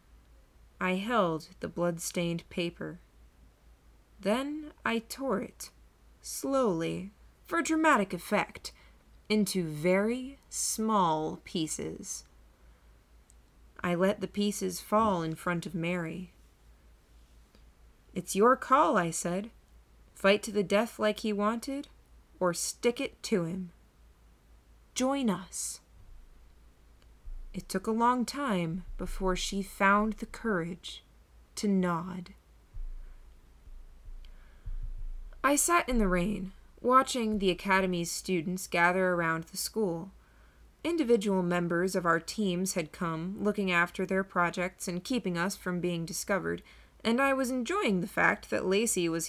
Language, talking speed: English, 115 wpm